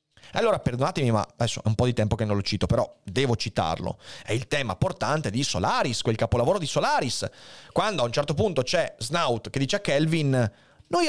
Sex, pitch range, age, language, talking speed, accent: male, 115-160 Hz, 30-49, Italian, 205 wpm, native